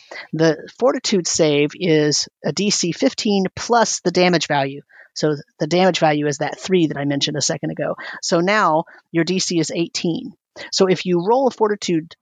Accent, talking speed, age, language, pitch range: American, 175 wpm, 40-59, English, 155-195 Hz